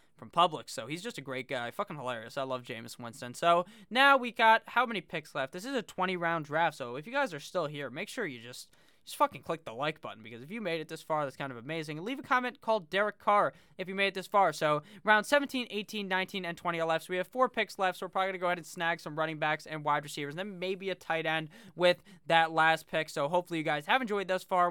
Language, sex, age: English, male, 20-39